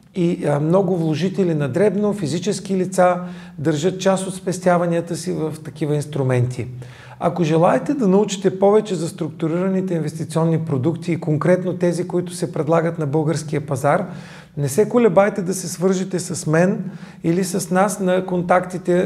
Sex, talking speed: male, 145 wpm